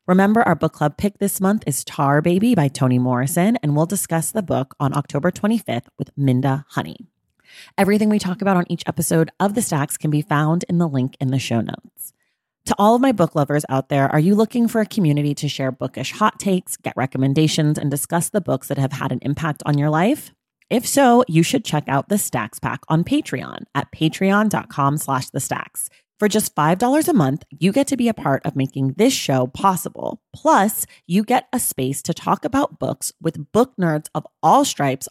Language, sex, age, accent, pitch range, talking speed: English, female, 30-49, American, 145-215 Hz, 210 wpm